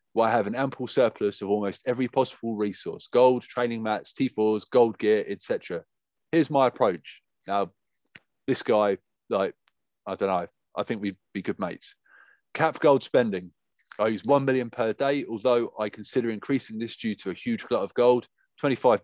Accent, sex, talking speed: British, male, 180 wpm